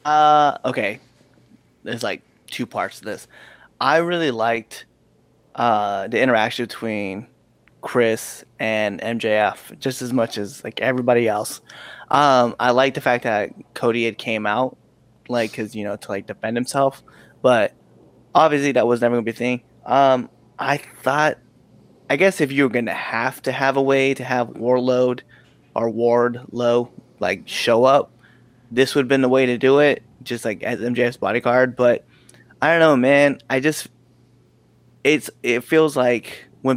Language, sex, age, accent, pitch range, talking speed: English, male, 20-39, American, 115-135 Hz, 165 wpm